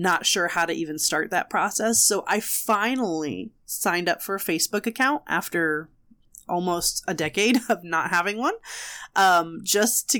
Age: 20-39